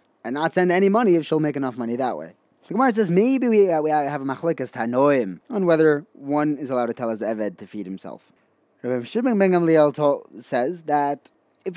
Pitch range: 130-180 Hz